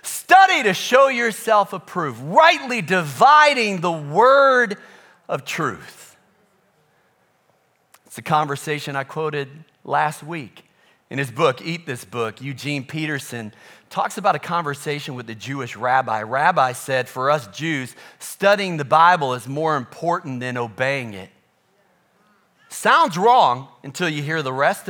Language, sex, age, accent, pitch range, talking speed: English, male, 40-59, American, 145-220 Hz, 135 wpm